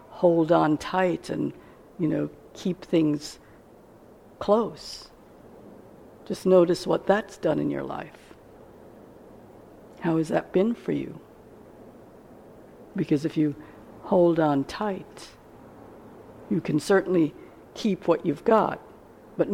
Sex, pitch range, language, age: female, 160-190 Hz, English, 60-79